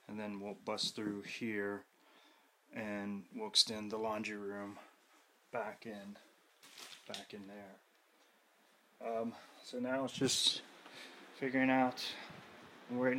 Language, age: English, 20-39